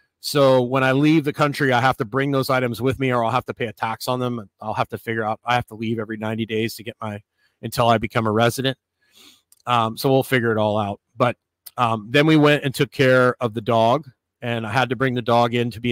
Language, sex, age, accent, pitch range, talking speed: English, male, 30-49, American, 110-130 Hz, 270 wpm